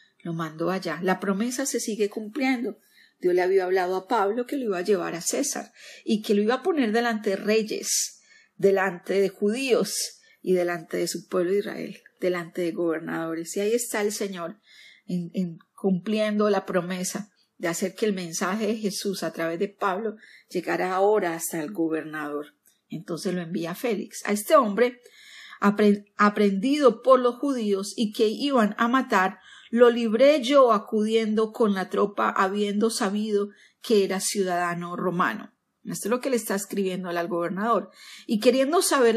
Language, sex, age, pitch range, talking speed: Spanish, female, 40-59, 190-235 Hz, 170 wpm